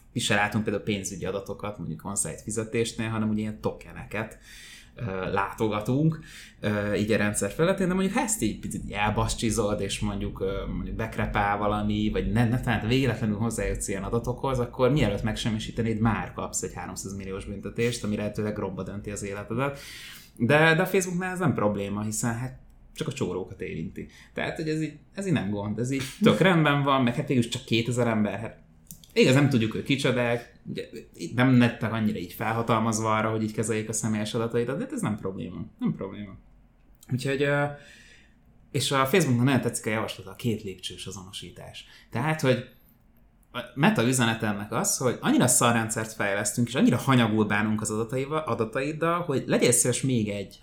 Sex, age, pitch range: male, 20-39, 105-125 Hz